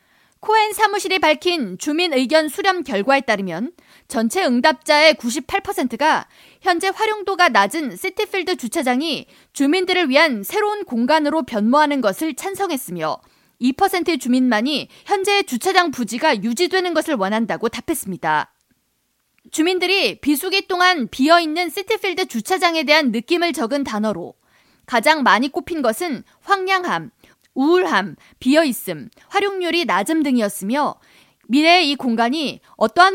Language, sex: Korean, female